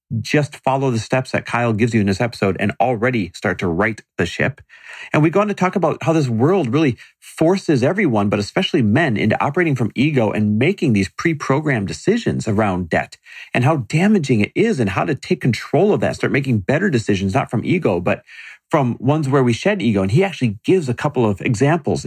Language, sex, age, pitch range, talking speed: English, male, 40-59, 100-130 Hz, 215 wpm